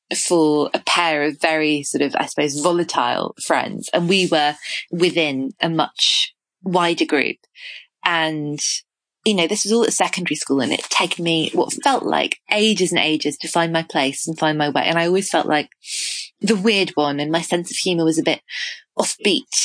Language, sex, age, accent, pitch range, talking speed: English, female, 20-39, British, 155-190 Hz, 190 wpm